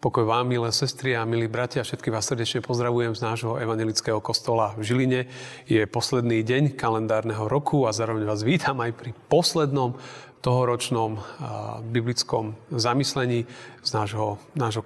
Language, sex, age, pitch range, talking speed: Slovak, male, 40-59, 115-135 Hz, 140 wpm